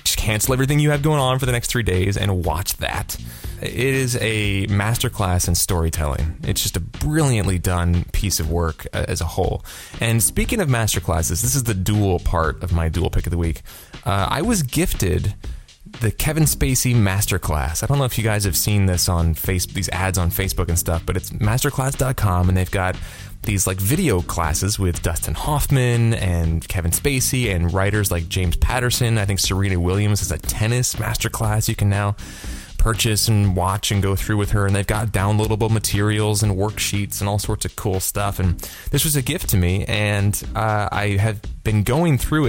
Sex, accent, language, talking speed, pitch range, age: male, American, English, 200 wpm, 85-110 Hz, 20-39